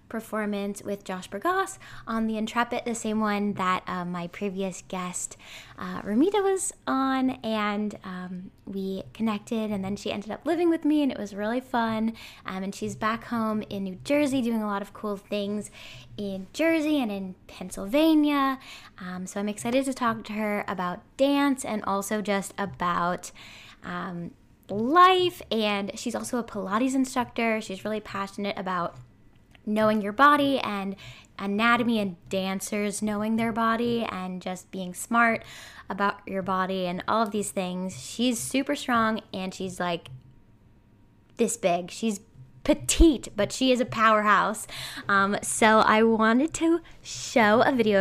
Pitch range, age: 195-240 Hz, 10-29